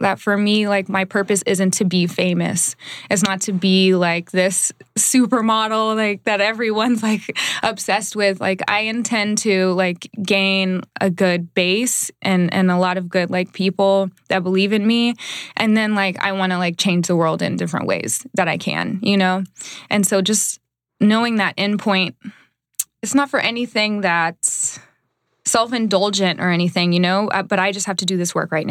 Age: 20-39